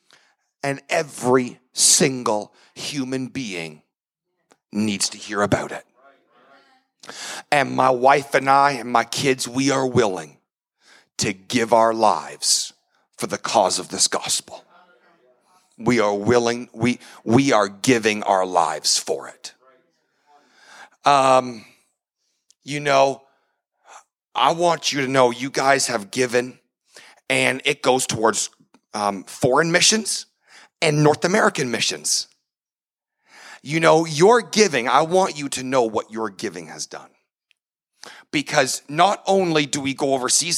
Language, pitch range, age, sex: English, 120-155 Hz, 40-59, male